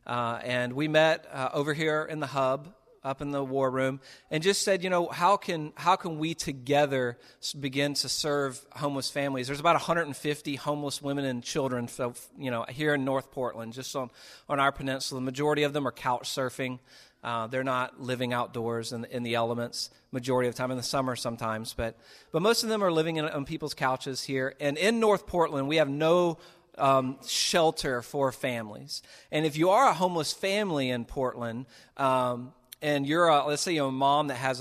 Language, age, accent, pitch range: English, 40-59, American, 125-150 Hz